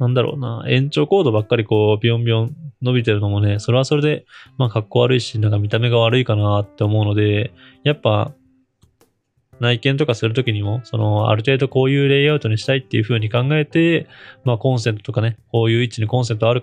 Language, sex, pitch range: Japanese, male, 105-130 Hz